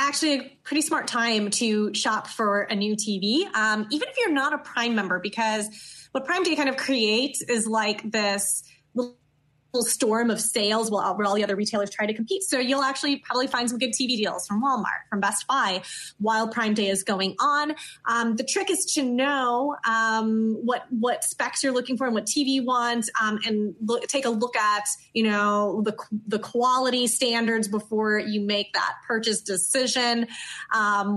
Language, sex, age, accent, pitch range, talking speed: English, female, 20-39, American, 205-245 Hz, 190 wpm